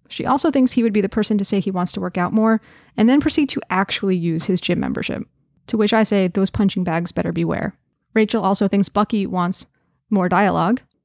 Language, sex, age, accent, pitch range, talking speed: English, female, 20-39, American, 185-250 Hz, 225 wpm